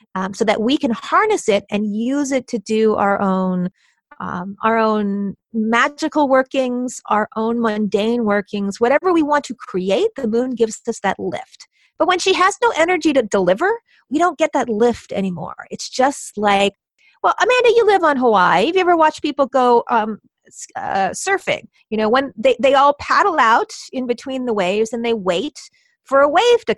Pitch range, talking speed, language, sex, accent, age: 210-285 Hz, 190 wpm, English, female, American, 30-49